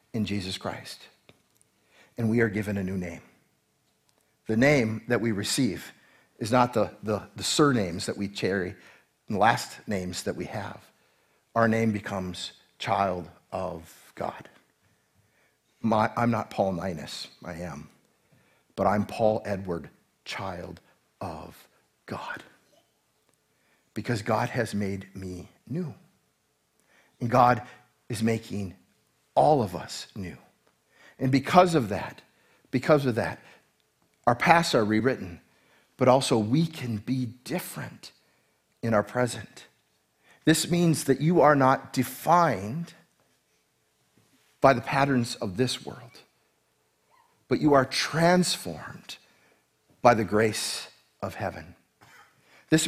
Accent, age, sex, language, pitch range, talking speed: American, 50-69, male, English, 100-130 Hz, 125 wpm